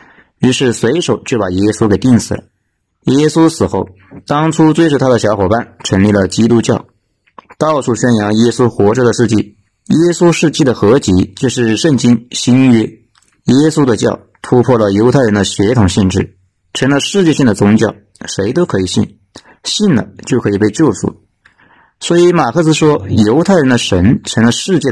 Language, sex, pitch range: Chinese, male, 100-145 Hz